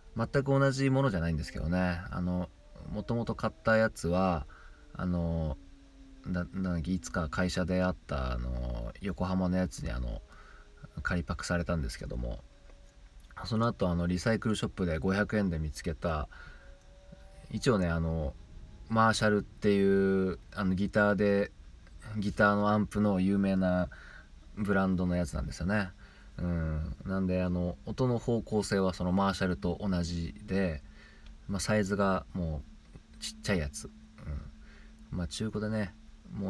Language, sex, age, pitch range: Japanese, male, 20-39, 80-100 Hz